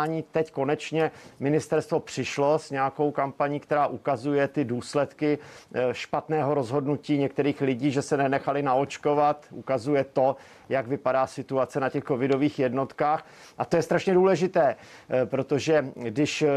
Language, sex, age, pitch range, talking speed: Czech, male, 50-69, 135-155 Hz, 125 wpm